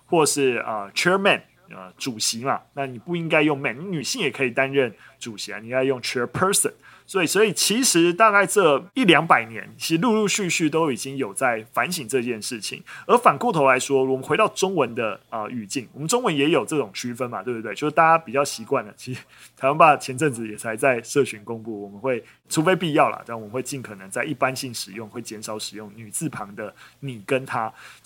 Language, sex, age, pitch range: Chinese, male, 20-39, 115-160 Hz